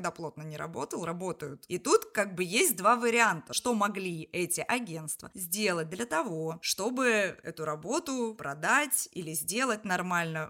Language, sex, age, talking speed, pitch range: Russian, female, 20-39, 145 wpm, 170-235 Hz